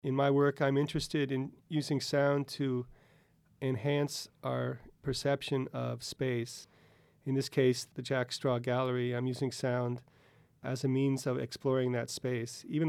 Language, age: English, 40-59